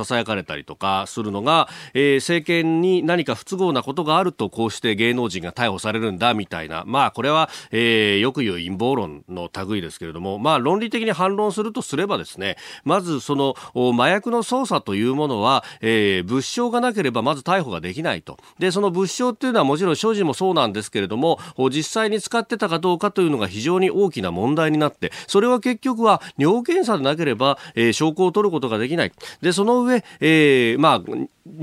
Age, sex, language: 40-59, male, Japanese